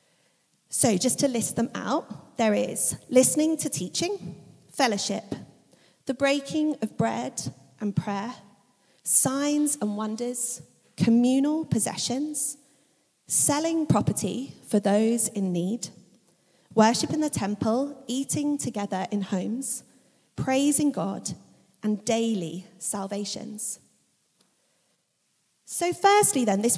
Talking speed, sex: 105 wpm, female